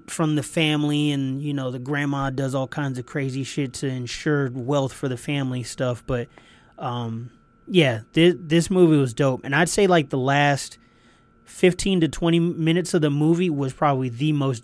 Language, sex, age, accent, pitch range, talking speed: English, male, 30-49, American, 125-155 Hz, 190 wpm